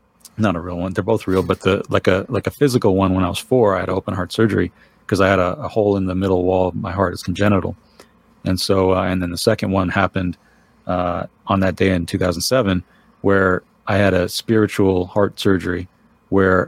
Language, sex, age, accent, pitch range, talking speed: English, male, 40-59, American, 95-110 Hz, 225 wpm